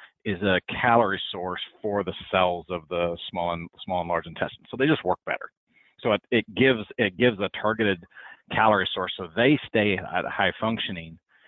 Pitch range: 95-115 Hz